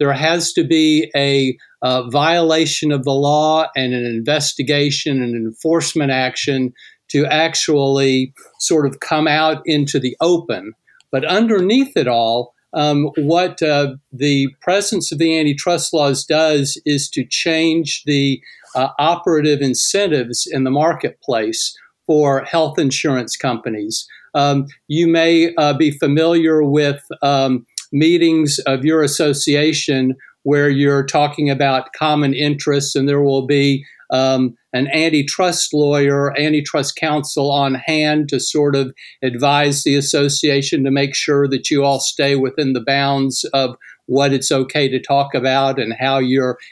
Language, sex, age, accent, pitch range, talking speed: English, male, 50-69, American, 135-155 Hz, 140 wpm